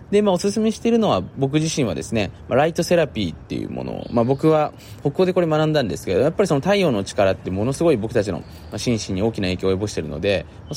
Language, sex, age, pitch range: Japanese, male, 20-39, 95-145 Hz